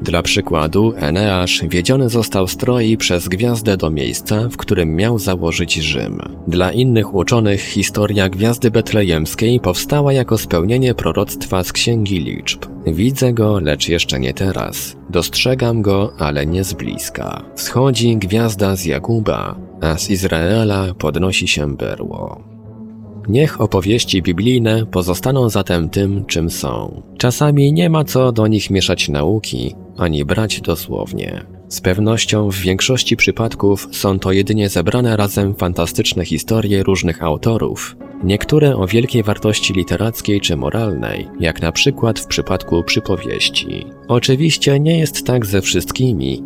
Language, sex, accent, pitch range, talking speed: Polish, male, native, 90-115 Hz, 130 wpm